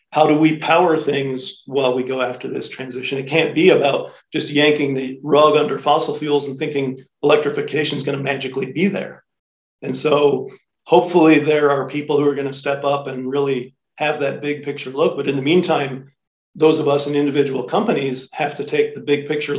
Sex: male